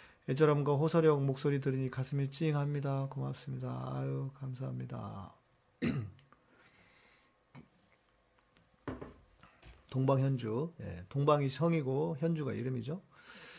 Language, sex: Korean, male